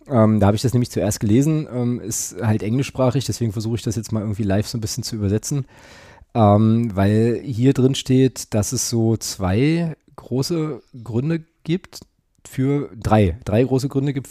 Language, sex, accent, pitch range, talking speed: German, male, German, 110-135 Hz, 180 wpm